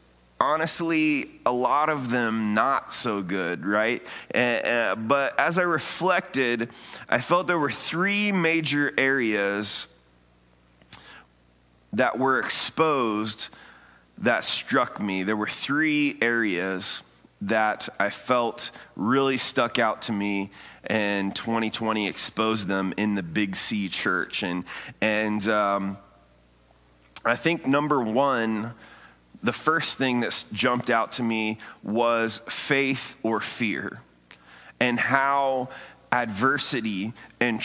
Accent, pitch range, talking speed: American, 95-135 Hz, 115 wpm